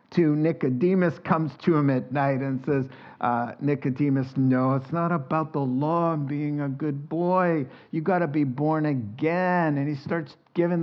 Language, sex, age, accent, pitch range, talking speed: English, male, 50-69, American, 130-185 Hz, 175 wpm